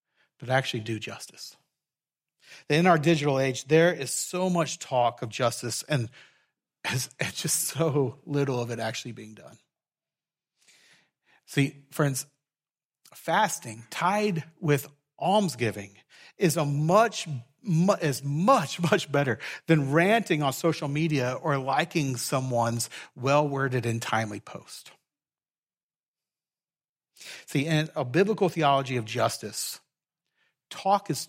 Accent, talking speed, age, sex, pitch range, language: American, 110 wpm, 40-59, male, 125-160 Hz, English